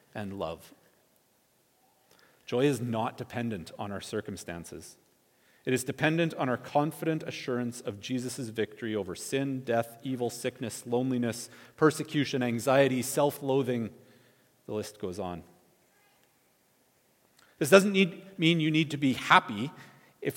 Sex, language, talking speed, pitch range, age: male, English, 125 wpm, 120-165 Hz, 40-59